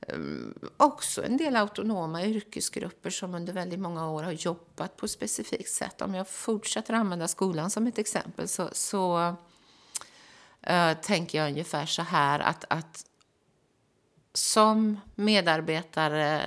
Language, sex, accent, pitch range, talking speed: Swedish, female, native, 150-190 Hz, 130 wpm